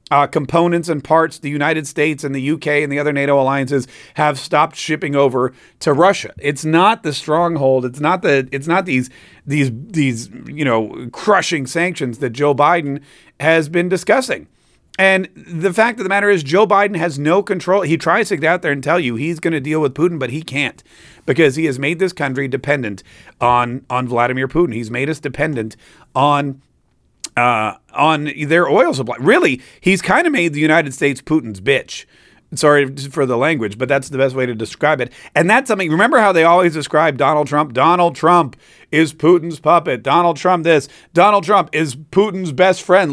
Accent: American